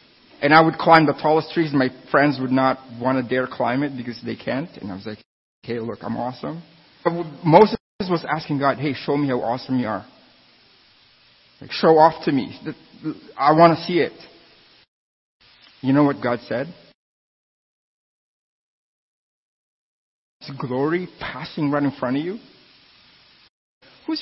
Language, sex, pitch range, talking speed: English, male, 125-170 Hz, 160 wpm